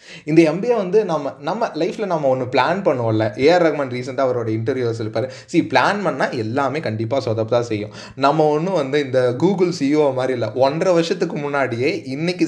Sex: male